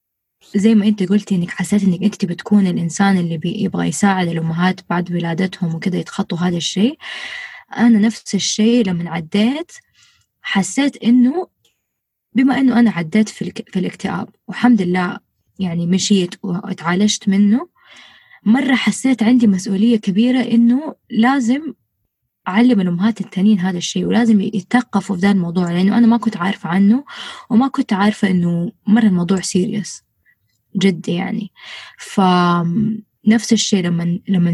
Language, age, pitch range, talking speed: Arabic, 20-39, 185-225 Hz, 135 wpm